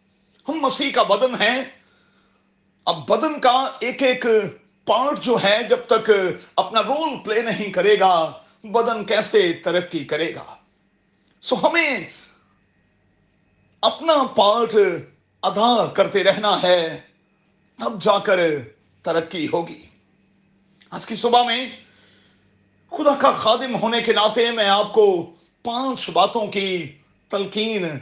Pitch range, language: 190-235 Hz, Urdu